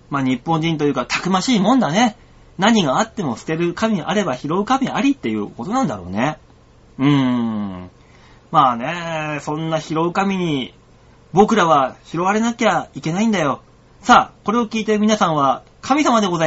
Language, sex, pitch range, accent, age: Japanese, male, 140-220 Hz, native, 30-49